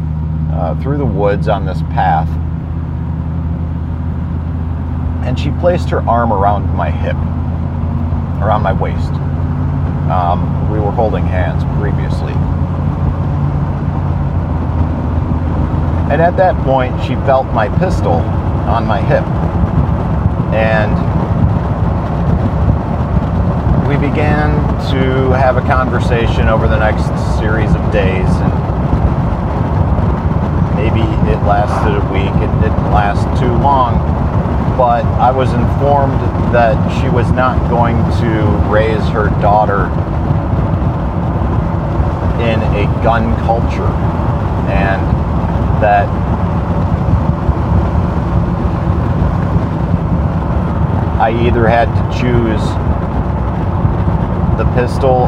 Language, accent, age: English, American, 40-59